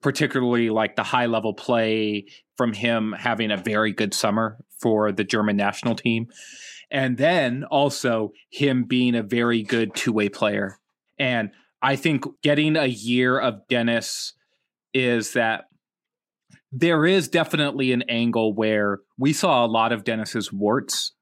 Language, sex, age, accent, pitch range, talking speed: English, male, 30-49, American, 115-145 Hz, 145 wpm